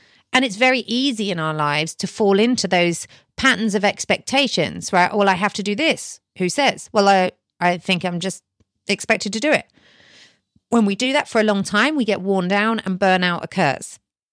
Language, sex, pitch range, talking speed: English, female, 175-225 Hz, 200 wpm